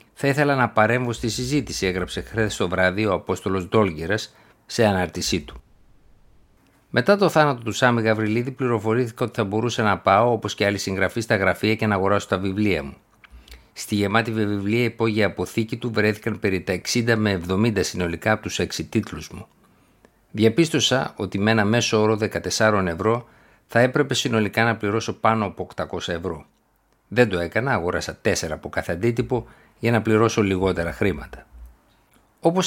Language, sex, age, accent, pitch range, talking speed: Greek, male, 60-79, native, 95-115 Hz, 160 wpm